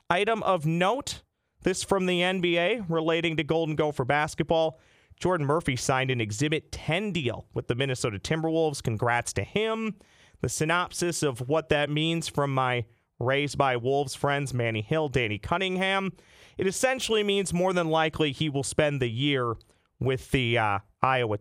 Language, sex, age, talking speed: English, male, 30-49, 160 wpm